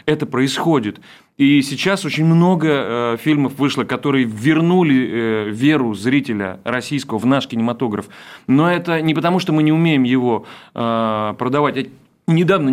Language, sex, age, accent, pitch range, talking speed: Russian, male, 30-49, native, 125-180 Hz, 145 wpm